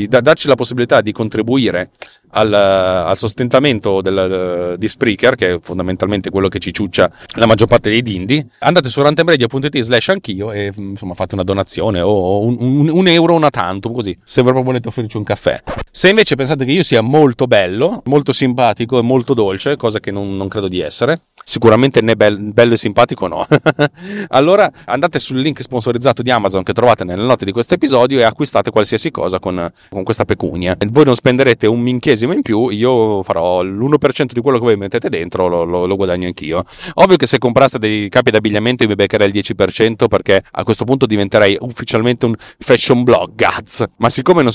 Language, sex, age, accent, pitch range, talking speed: Italian, male, 30-49, native, 100-130 Hz, 195 wpm